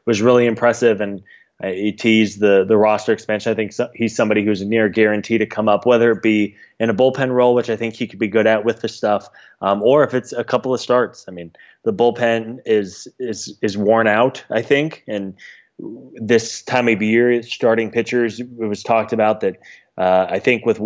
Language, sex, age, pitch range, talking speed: English, male, 20-39, 105-115 Hz, 215 wpm